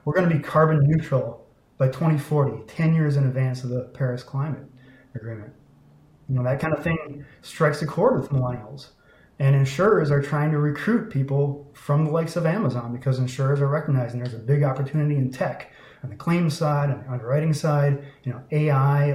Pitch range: 130-150 Hz